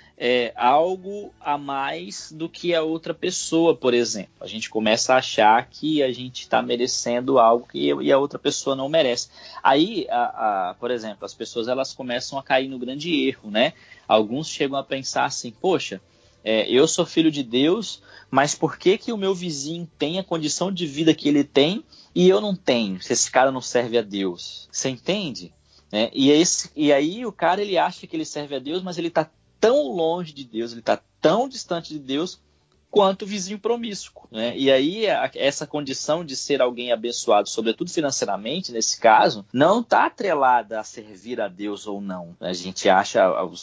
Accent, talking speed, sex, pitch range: Brazilian, 195 wpm, male, 120-165 Hz